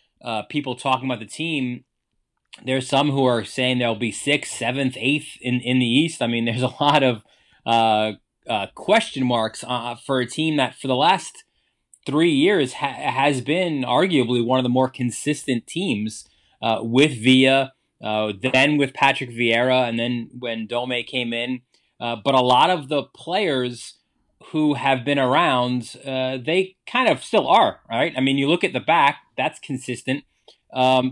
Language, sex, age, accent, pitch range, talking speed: English, male, 20-39, American, 120-140 Hz, 175 wpm